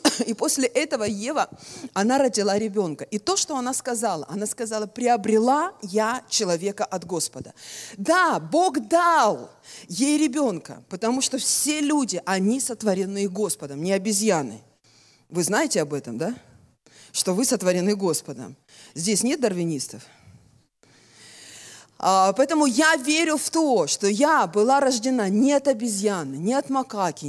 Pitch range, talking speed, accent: 190-270 Hz, 130 wpm, native